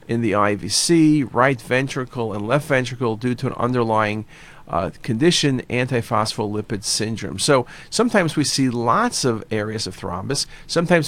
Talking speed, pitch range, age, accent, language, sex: 140 wpm, 120-155 Hz, 50-69, American, English, male